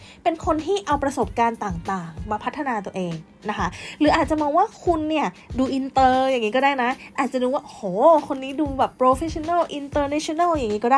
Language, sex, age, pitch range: Thai, female, 20-39, 220-305 Hz